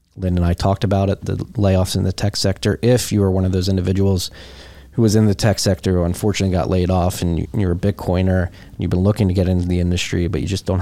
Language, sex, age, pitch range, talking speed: English, male, 30-49, 90-100 Hz, 260 wpm